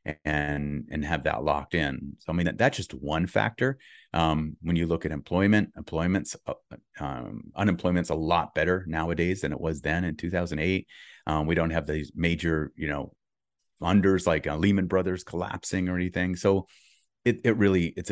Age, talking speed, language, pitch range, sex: 30-49, 180 wpm, English, 80-95 Hz, male